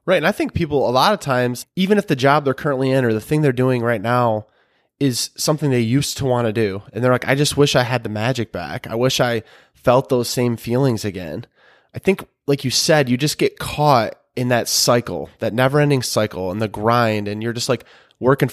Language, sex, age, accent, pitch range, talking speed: English, male, 20-39, American, 115-135 Hz, 235 wpm